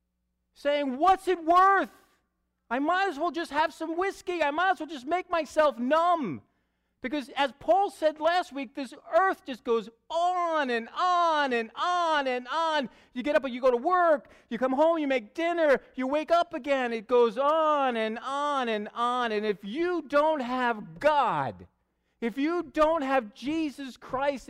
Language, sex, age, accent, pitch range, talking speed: English, male, 40-59, American, 215-310 Hz, 180 wpm